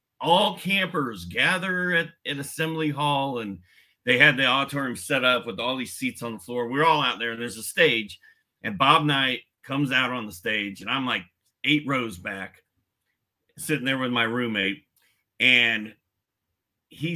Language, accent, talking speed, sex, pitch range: English, American, 175 wpm, male, 110-150 Hz